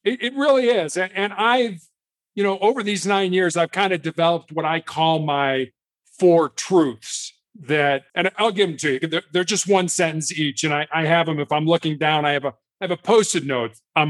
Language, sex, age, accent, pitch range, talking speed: English, male, 50-69, American, 150-195 Hz, 205 wpm